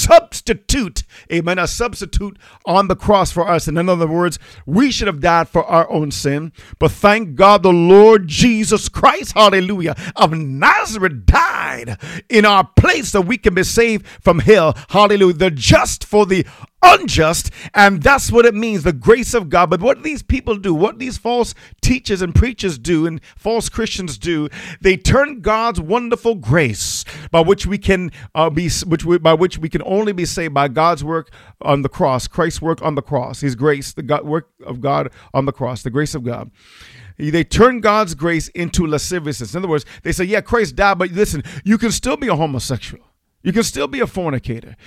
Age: 50-69